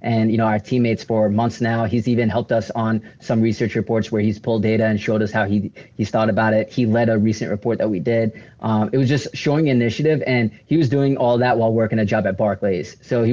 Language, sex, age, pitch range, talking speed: English, male, 20-39, 110-125 Hz, 255 wpm